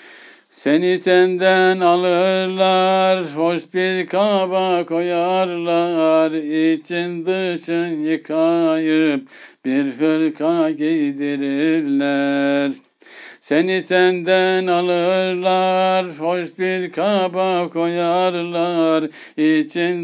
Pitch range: 125-175 Hz